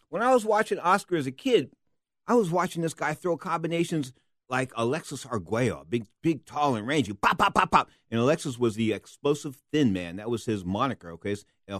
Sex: male